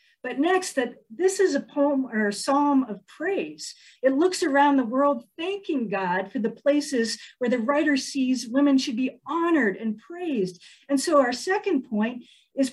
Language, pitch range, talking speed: English, 230-305 Hz, 175 wpm